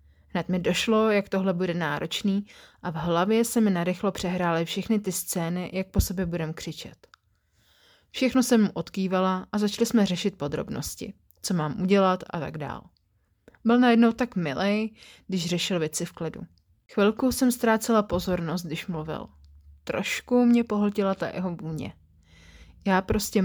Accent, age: native, 30-49